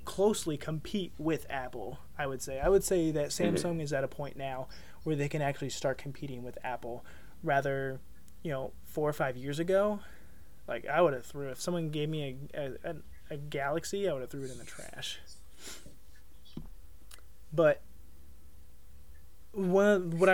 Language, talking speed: English, 170 wpm